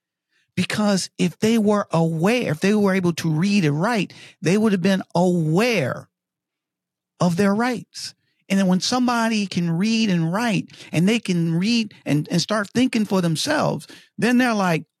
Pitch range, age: 165-240 Hz, 50-69